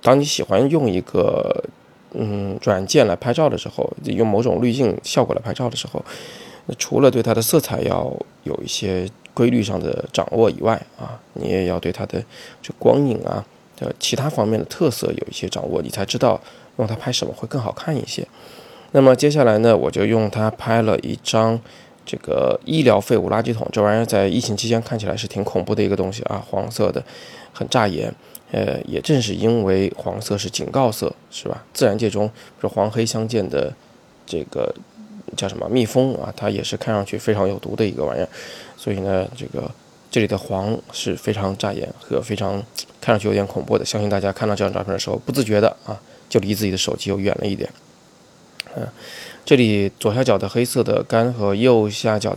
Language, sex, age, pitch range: Chinese, male, 20-39, 100-120 Hz